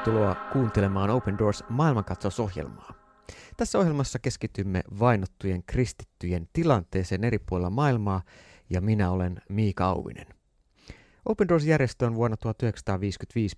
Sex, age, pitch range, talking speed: male, 30-49, 95-135 Hz, 110 wpm